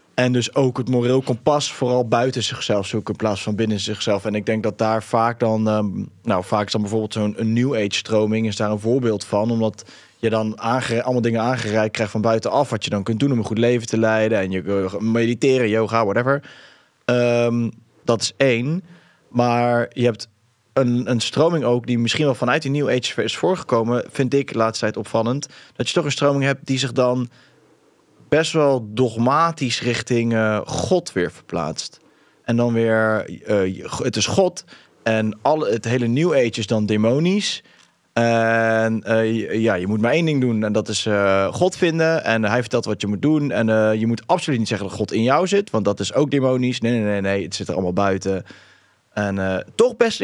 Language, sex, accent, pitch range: English, male, Dutch, 110-130 Hz